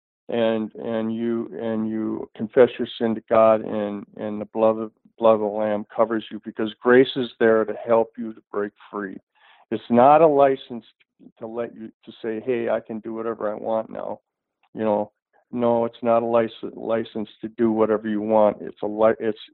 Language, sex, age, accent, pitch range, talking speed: English, male, 50-69, American, 110-125 Hz, 200 wpm